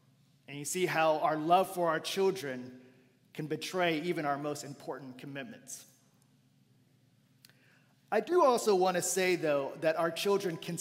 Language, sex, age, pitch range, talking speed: English, male, 40-59, 145-180 Hz, 150 wpm